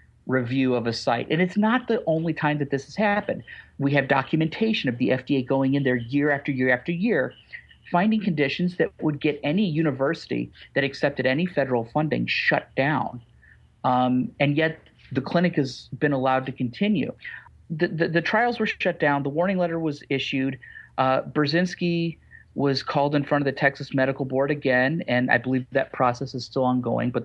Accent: American